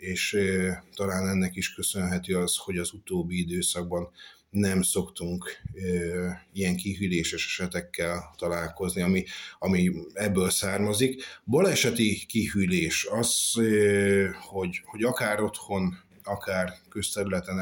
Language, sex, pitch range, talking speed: Hungarian, male, 90-105 Hz, 110 wpm